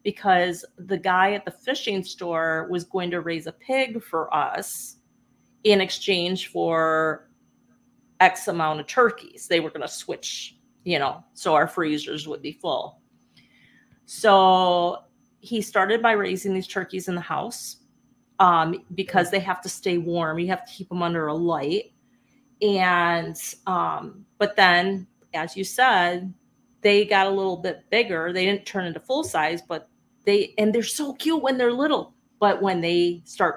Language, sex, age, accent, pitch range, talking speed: English, female, 30-49, American, 170-210 Hz, 165 wpm